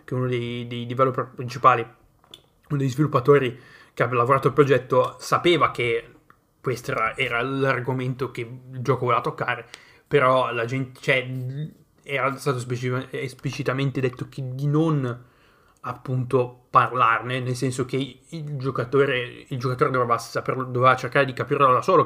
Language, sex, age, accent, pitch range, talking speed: Italian, male, 20-39, native, 125-140 Hz, 140 wpm